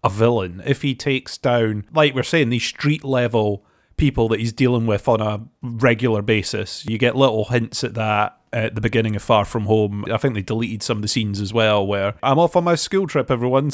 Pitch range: 110-135 Hz